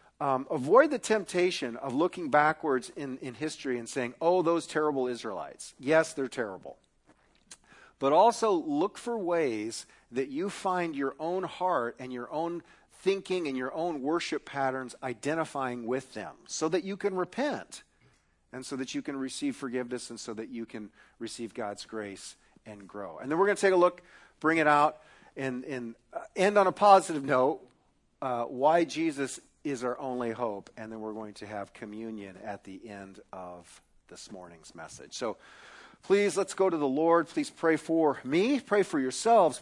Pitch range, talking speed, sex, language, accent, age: 115-170 Hz, 180 wpm, male, English, American, 50-69